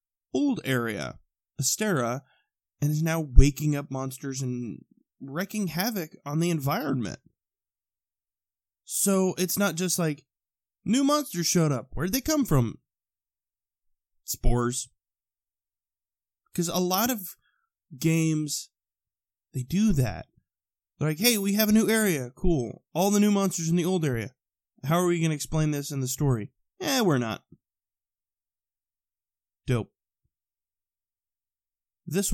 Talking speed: 130 wpm